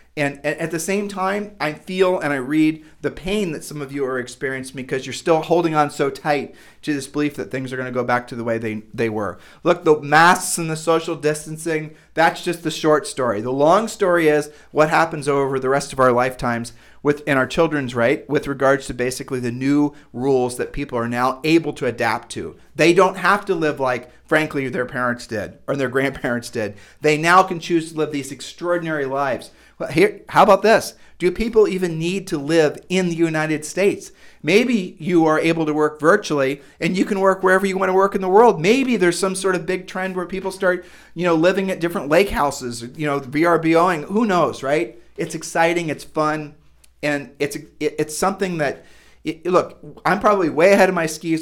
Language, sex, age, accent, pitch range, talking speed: English, male, 40-59, American, 135-175 Hz, 210 wpm